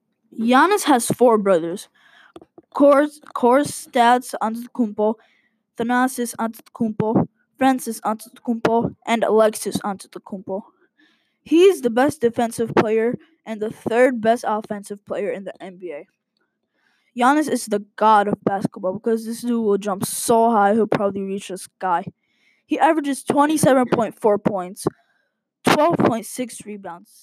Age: 10-29